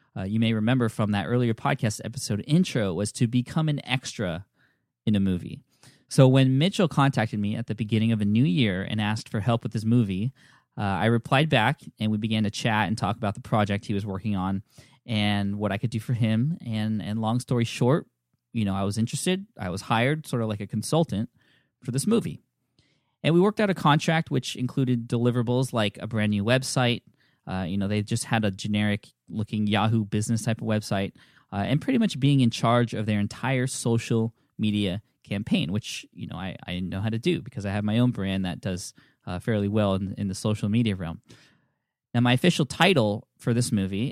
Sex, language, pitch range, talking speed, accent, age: male, English, 105-130 Hz, 215 wpm, American, 20-39